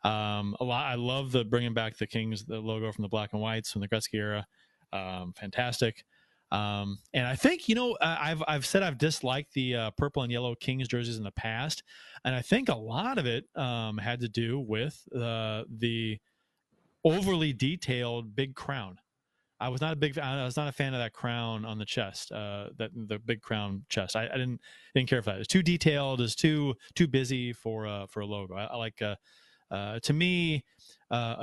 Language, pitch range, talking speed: English, 105-140 Hz, 220 wpm